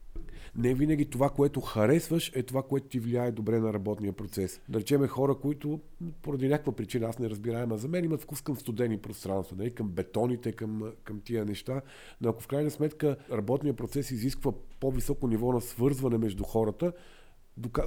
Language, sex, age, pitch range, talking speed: Bulgarian, male, 50-69, 115-135 Hz, 175 wpm